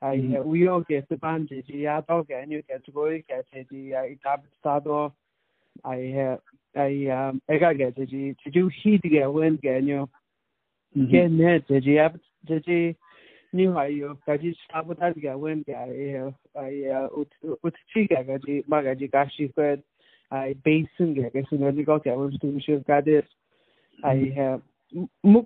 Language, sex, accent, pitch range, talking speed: English, male, Indian, 135-160 Hz, 55 wpm